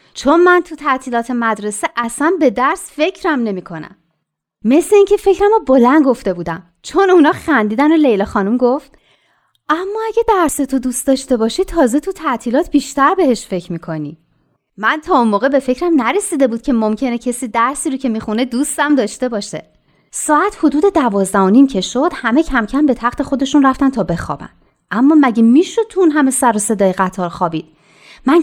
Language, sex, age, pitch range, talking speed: Persian, female, 30-49, 215-310 Hz, 170 wpm